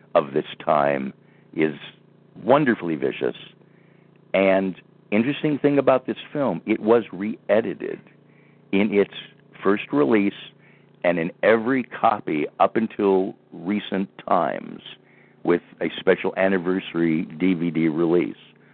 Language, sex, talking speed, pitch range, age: English, male, 105 wpm, 90-115 Hz, 60-79